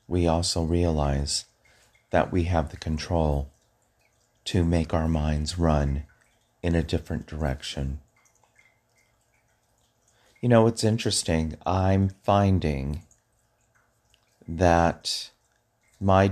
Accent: American